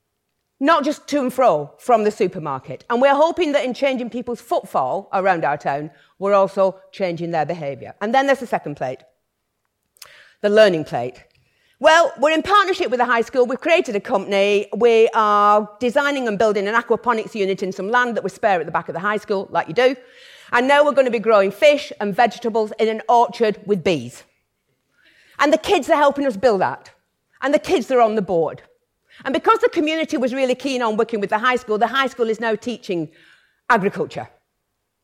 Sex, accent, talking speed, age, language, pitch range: female, British, 205 wpm, 40-59, English, 200-275 Hz